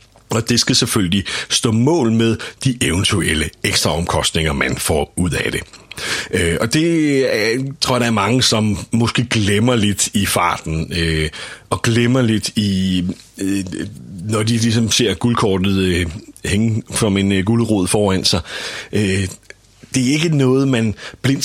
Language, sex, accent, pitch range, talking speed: Danish, male, native, 95-120 Hz, 135 wpm